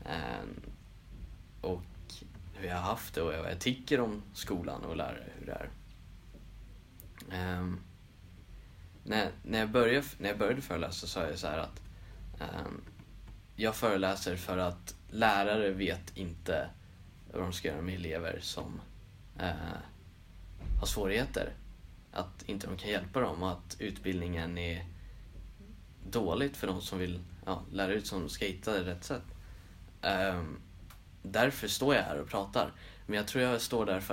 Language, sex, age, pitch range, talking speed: Swedish, male, 10-29, 85-100 Hz, 155 wpm